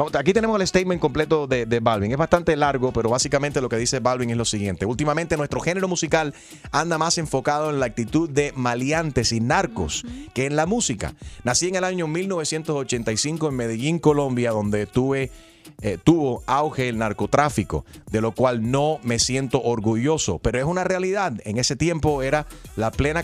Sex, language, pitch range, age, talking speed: male, Spanish, 115-155 Hz, 30-49, 180 wpm